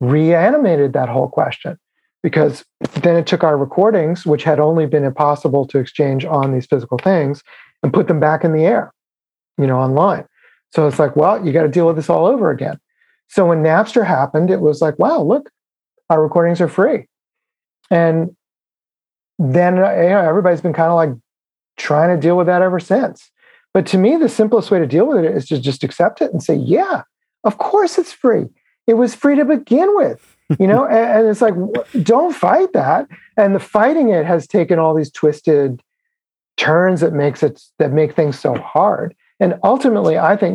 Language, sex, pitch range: English, male, 140-185 Hz